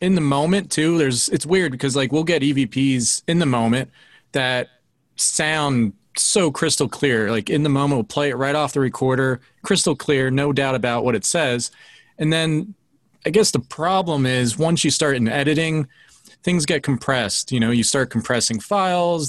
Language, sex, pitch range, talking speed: English, male, 125-165 Hz, 185 wpm